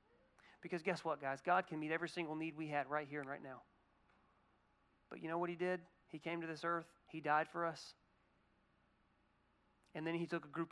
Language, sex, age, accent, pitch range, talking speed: English, male, 40-59, American, 155-190 Hz, 215 wpm